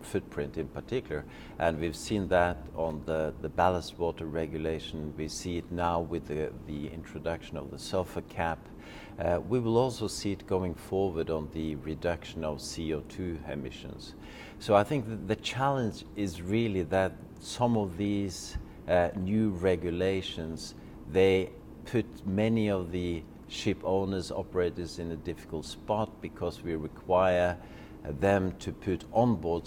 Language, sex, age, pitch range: English, male, 50-69, 80-95 Hz